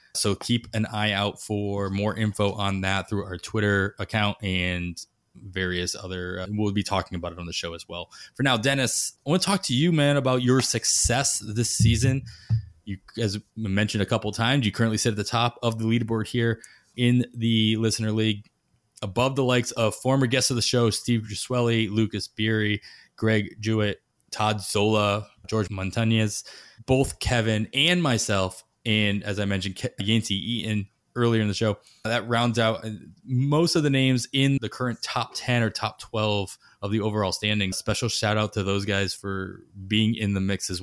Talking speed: 190 wpm